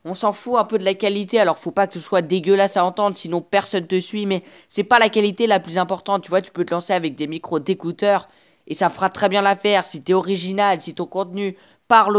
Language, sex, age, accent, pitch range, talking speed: French, female, 20-39, French, 155-200 Hz, 260 wpm